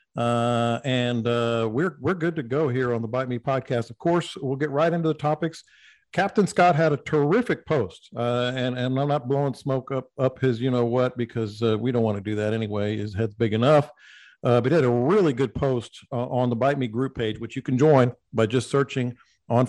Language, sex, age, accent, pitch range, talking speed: English, male, 50-69, American, 120-145 Hz, 235 wpm